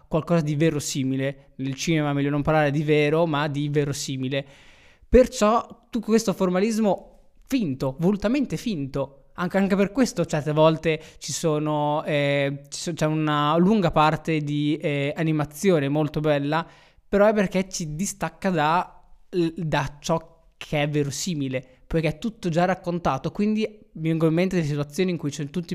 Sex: male